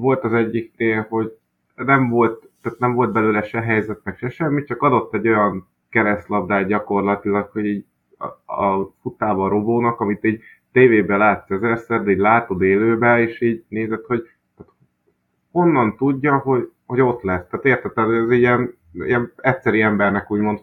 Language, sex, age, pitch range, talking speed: Hungarian, male, 30-49, 100-120 Hz, 155 wpm